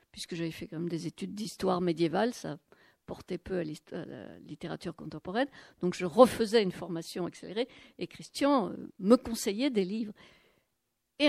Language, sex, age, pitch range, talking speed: French, female, 60-79, 180-240 Hz, 155 wpm